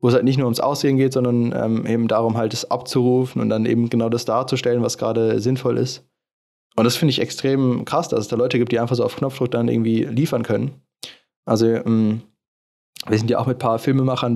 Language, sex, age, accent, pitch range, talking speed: German, male, 20-39, German, 115-135 Hz, 230 wpm